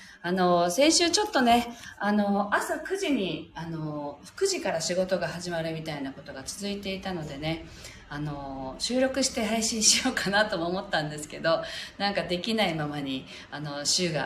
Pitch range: 150-210 Hz